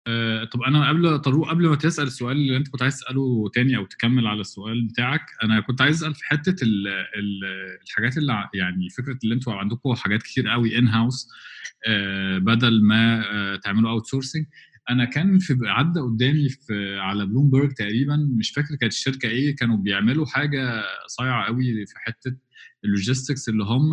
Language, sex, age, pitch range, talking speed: Arabic, male, 20-39, 105-135 Hz, 180 wpm